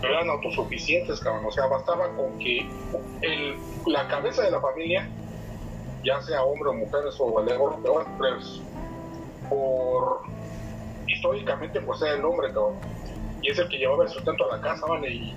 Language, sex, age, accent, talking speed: Spanish, male, 30-49, Mexican, 160 wpm